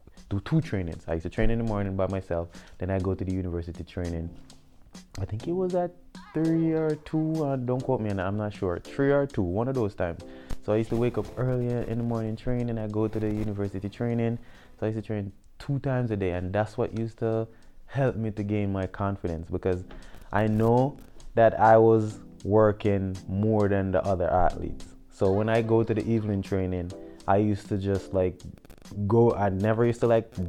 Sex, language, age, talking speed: male, English, 20-39, 215 wpm